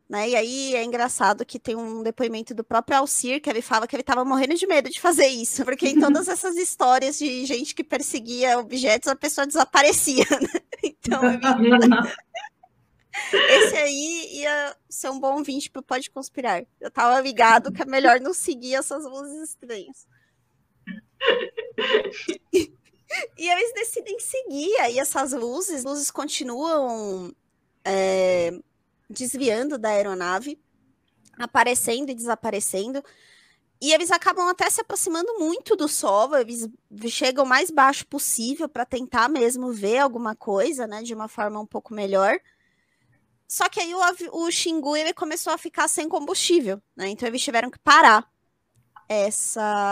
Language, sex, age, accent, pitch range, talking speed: Portuguese, female, 20-39, Brazilian, 225-325 Hz, 150 wpm